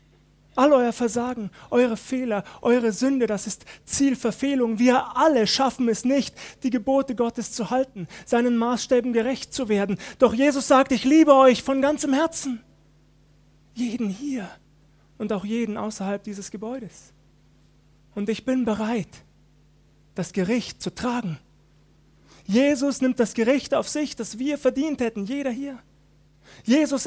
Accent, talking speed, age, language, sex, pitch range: German, 140 wpm, 30-49, German, male, 155-255 Hz